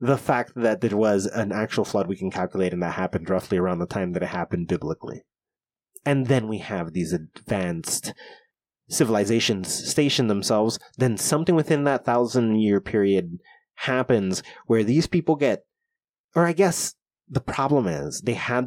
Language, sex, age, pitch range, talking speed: English, male, 30-49, 100-150 Hz, 165 wpm